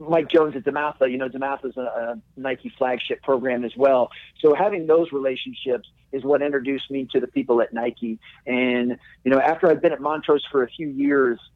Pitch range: 130-155 Hz